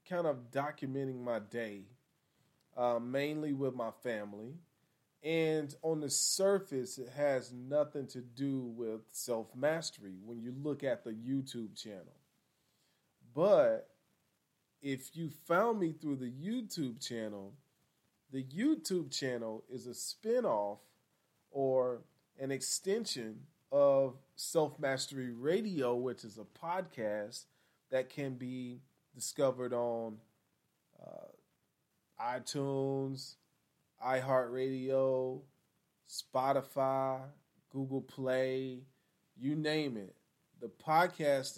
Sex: male